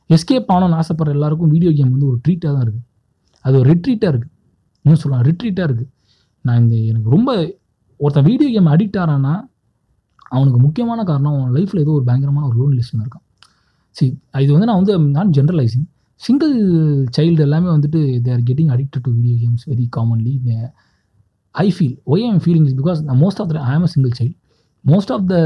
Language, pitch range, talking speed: Tamil, 130-175 Hz, 180 wpm